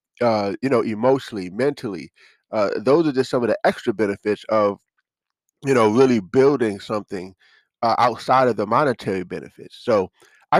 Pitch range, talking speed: 110-135 Hz, 160 wpm